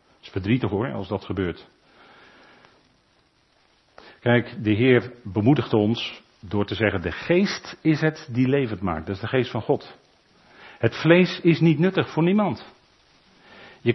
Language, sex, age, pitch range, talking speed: Dutch, male, 50-69, 110-150 Hz, 155 wpm